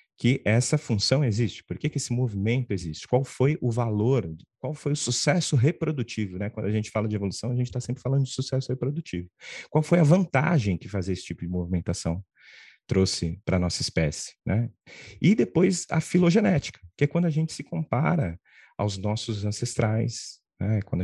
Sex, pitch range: male, 95-130 Hz